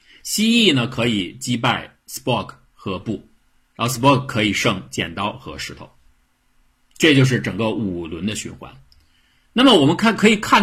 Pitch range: 105-140 Hz